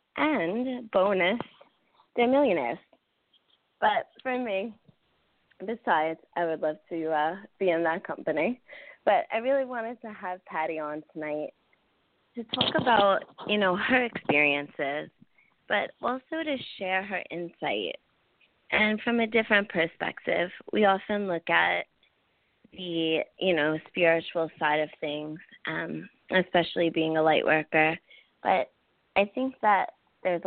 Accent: American